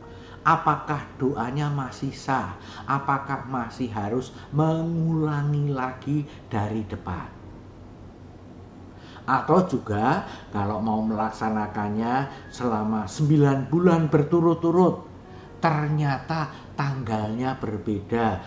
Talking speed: 75 wpm